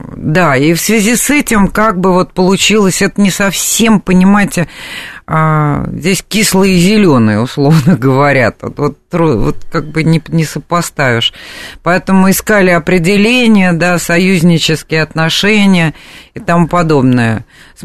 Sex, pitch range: female, 140-185 Hz